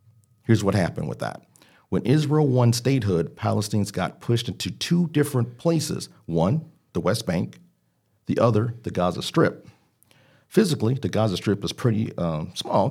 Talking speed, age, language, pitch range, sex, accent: 155 wpm, 50-69, English, 85-120 Hz, male, American